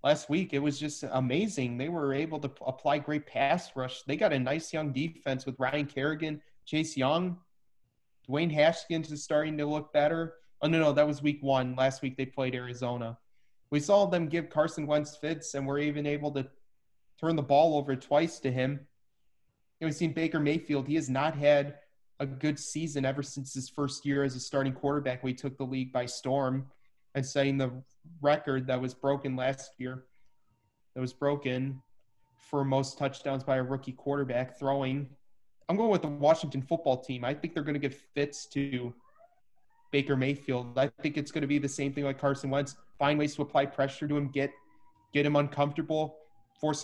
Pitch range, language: 130-150 Hz, English